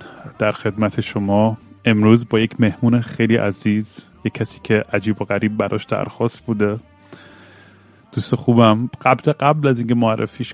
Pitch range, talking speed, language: 105-120 Hz, 140 wpm, Persian